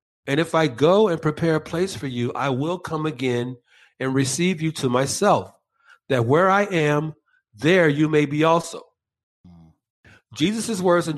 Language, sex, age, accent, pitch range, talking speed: English, male, 50-69, American, 130-175 Hz, 165 wpm